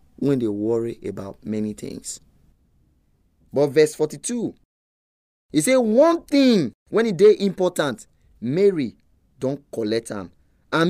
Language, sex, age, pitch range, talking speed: English, male, 30-49, 95-150 Hz, 115 wpm